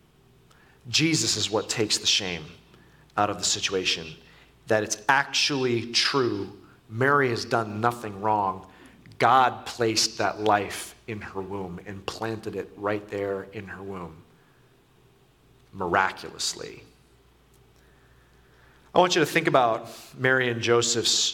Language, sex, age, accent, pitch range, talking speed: English, male, 40-59, American, 105-130 Hz, 125 wpm